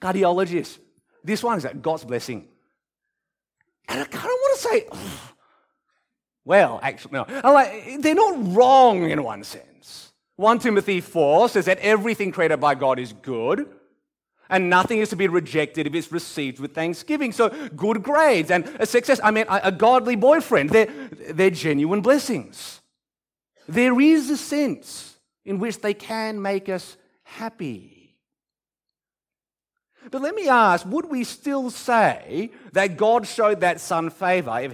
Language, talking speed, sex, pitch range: English, 155 wpm, male, 165-245 Hz